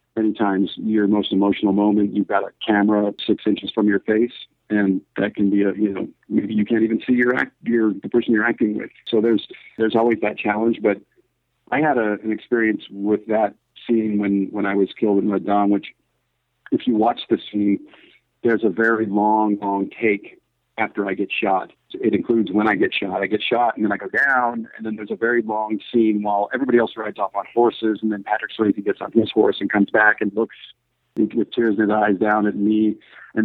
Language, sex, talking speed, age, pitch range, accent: English, male, 220 wpm, 50-69, 100-110 Hz, American